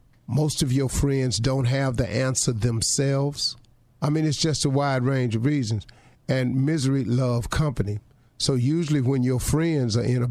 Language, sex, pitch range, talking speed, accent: English, male, 120-135 Hz, 175 wpm, American